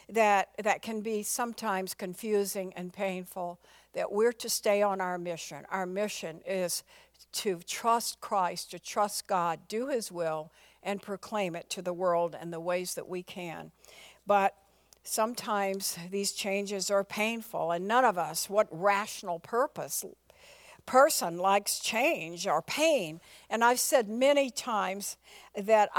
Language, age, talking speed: English, 60-79, 145 wpm